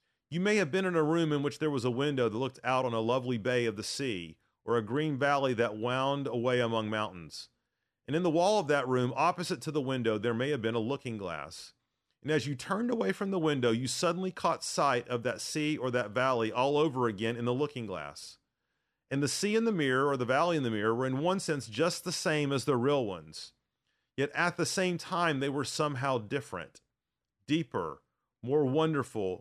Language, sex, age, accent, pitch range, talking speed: English, male, 40-59, American, 120-160 Hz, 225 wpm